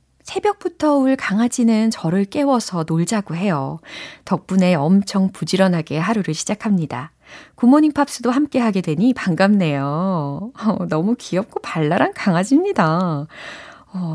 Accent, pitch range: native, 160-255 Hz